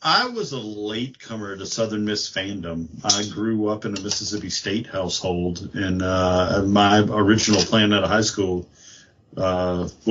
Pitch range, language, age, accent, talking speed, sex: 95-110 Hz, English, 50-69, American, 160 wpm, male